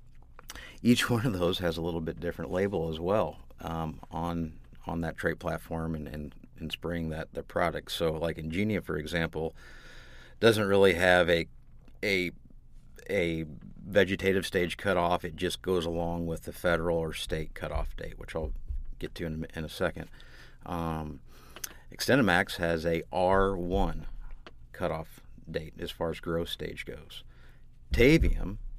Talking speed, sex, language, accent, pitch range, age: 155 wpm, male, English, American, 80-90 Hz, 50-69